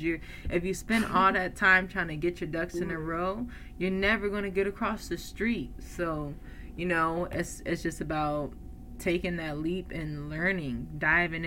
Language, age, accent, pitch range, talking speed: English, 20-39, American, 165-190 Hz, 190 wpm